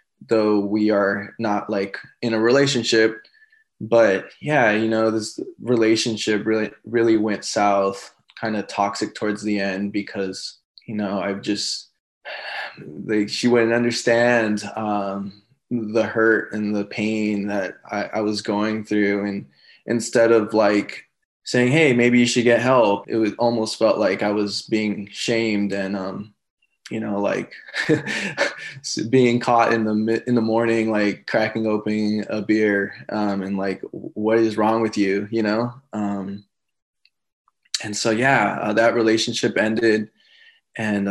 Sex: male